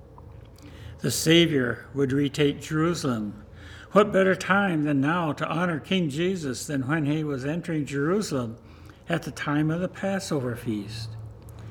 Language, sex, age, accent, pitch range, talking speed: English, male, 60-79, American, 110-165 Hz, 140 wpm